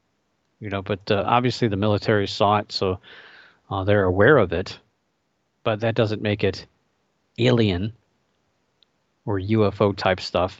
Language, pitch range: English, 95-115 Hz